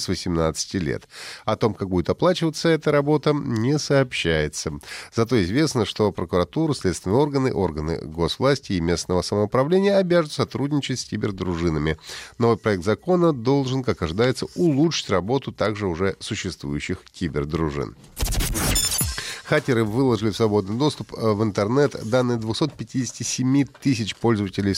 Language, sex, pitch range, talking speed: Russian, male, 95-130 Hz, 120 wpm